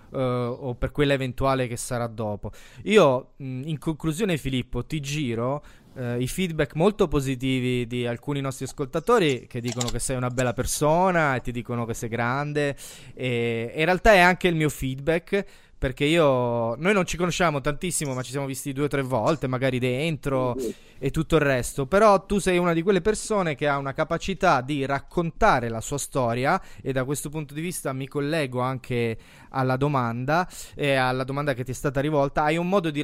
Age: 20-39